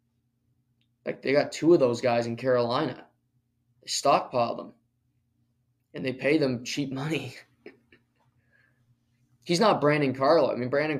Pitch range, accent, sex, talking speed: 120-135 Hz, American, male, 135 wpm